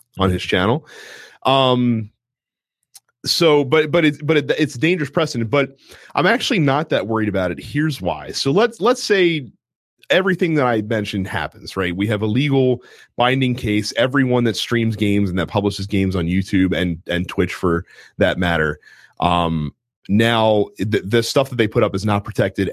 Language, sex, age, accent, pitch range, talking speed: English, male, 30-49, American, 90-130 Hz, 180 wpm